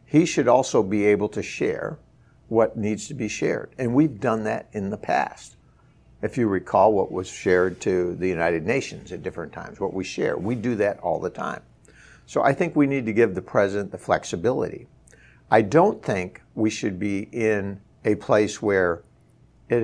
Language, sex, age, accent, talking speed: English, male, 60-79, American, 190 wpm